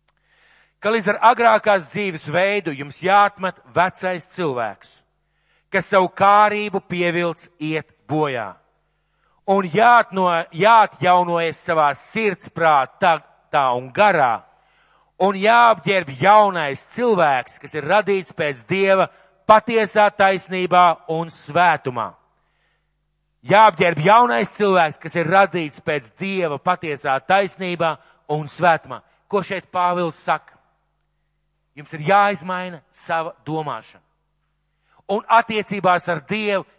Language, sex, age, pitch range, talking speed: English, male, 50-69, 165-205 Hz, 100 wpm